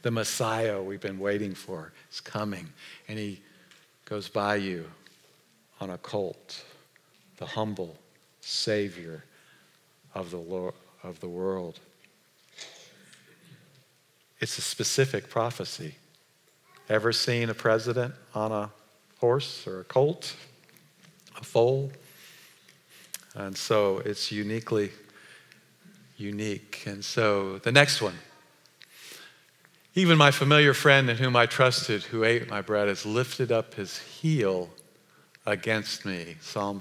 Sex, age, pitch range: male, 50-69, 100-120 Hz